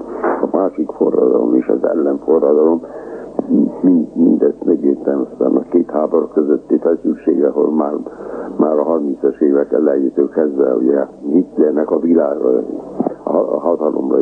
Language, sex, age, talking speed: Hungarian, male, 60-79, 125 wpm